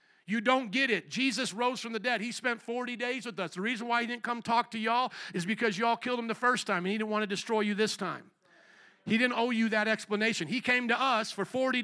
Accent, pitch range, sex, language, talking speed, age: American, 195-235 Hz, male, English, 270 wpm, 50-69